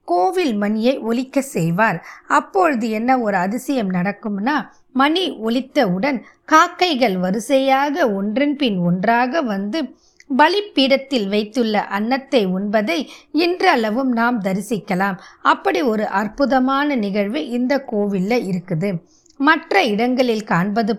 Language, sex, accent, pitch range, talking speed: Tamil, female, native, 205-280 Hz, 95 wpm